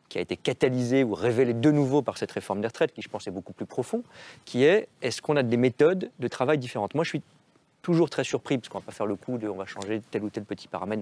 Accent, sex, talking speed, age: French, male, 290 wpm, 40-59